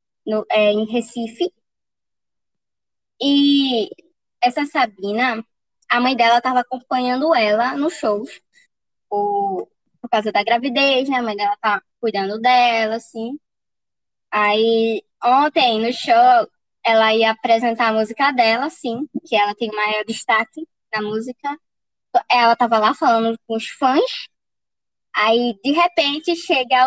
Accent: Brazilian